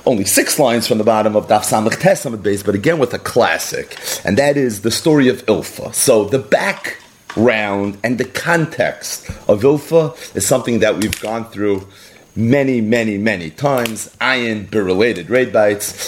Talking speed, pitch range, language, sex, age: 150 wpm, 110-160 Hz, English, male, 30-49